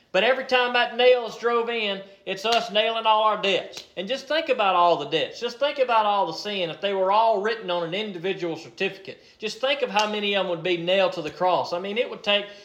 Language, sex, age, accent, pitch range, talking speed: English, male, 40-59, American, 165-220 Hz, 255 wpm